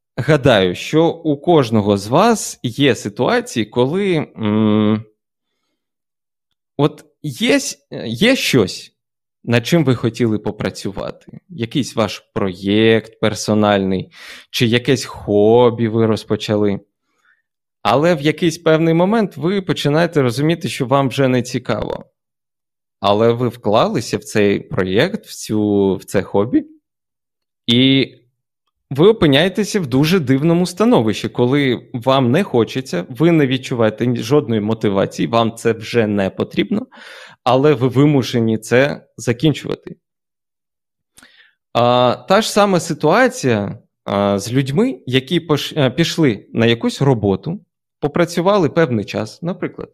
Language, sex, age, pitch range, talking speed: Ukrainian, male, 20-39, 110-160 Hz, 110 wpm